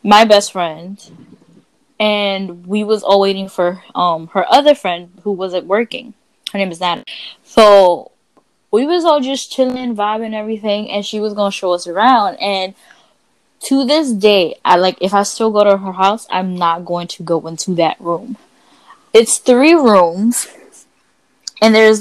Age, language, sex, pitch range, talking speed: 10-29, English, female, 190-245 Hz, 165 wpm